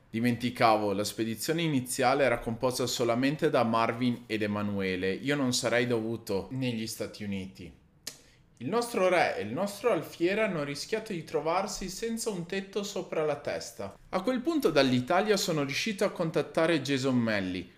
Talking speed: 150 wpm